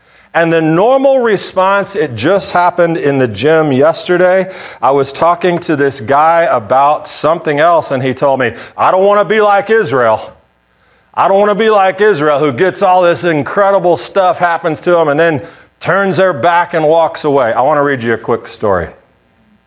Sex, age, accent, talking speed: male, 40-59, American, 190 wpm